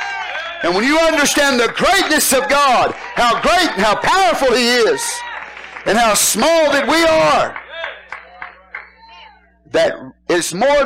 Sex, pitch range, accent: male, 195-325 Hz, American